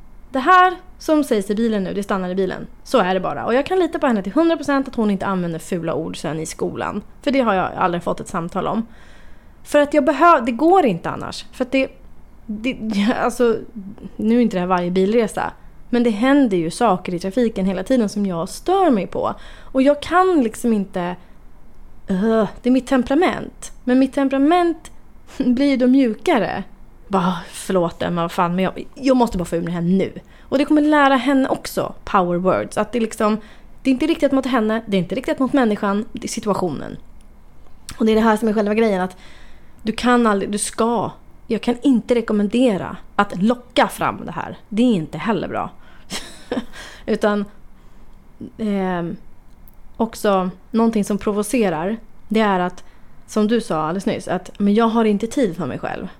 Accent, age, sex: native, 30-49, female